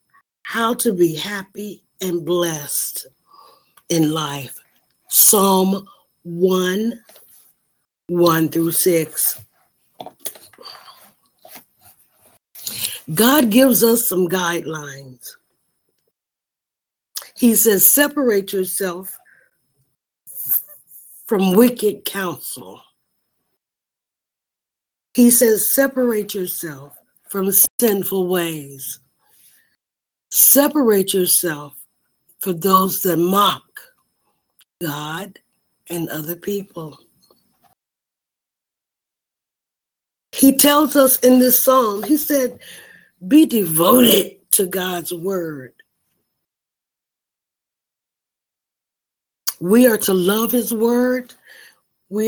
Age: 60-79